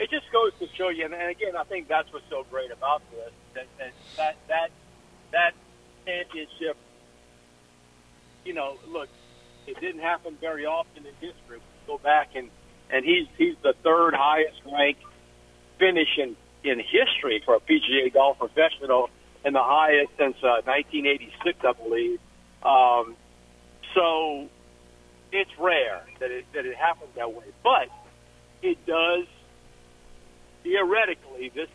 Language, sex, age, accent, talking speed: English, male, 50-69, American, 140 wpm